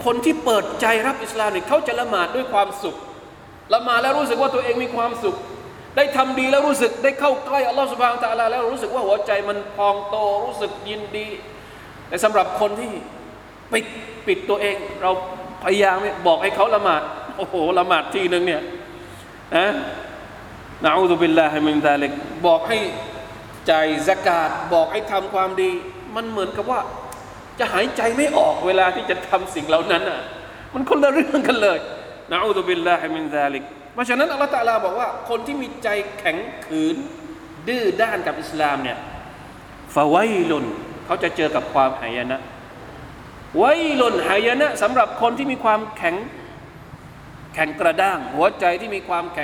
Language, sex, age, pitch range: Thai, male, 20-39, 175-255 Hz